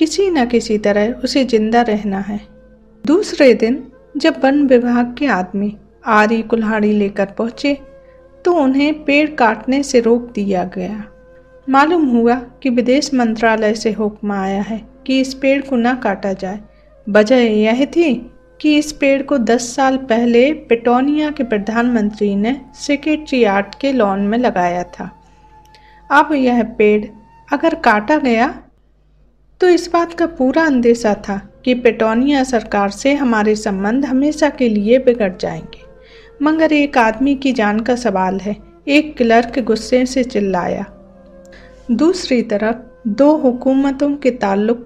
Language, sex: Hindi, female